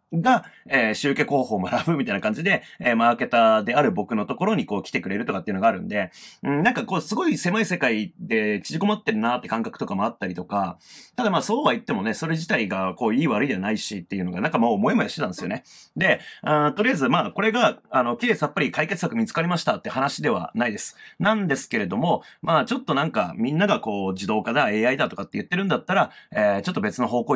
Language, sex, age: Japanese, male, 30-49